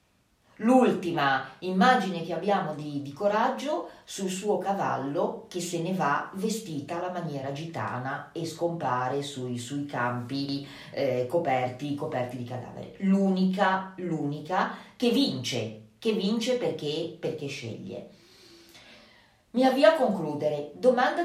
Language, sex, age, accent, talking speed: Italian, female, 40-59, native, 120 wpm